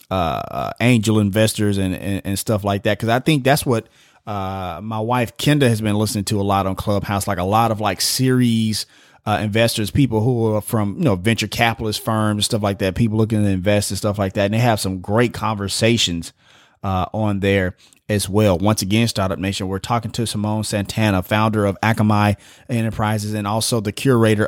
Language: English